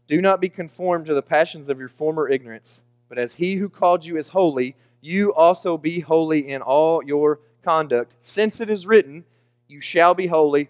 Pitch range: 120-160 Hz